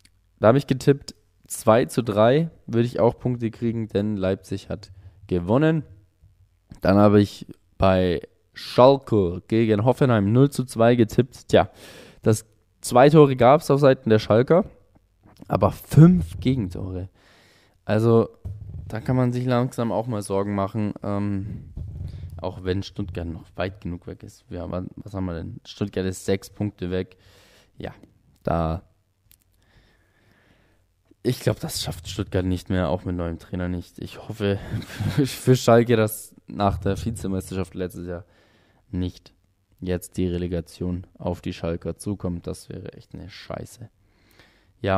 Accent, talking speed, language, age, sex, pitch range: German, 145 wpm, German, 20-39, male, 95-110 Hz